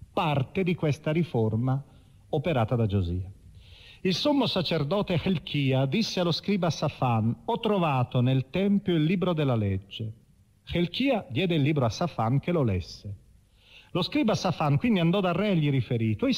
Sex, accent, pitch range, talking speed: male, native, 120-185 Hz, 160 wpm